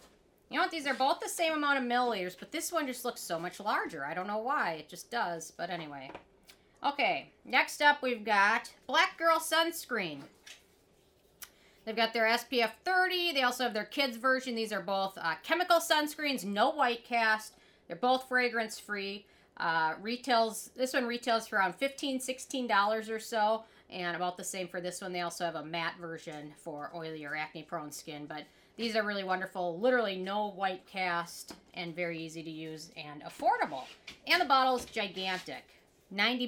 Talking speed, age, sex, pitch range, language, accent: 180 wpm, 40-59, female, 175-255 Hz, English, American